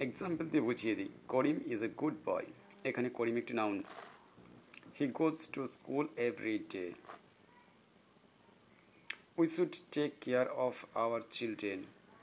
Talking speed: 125 wpm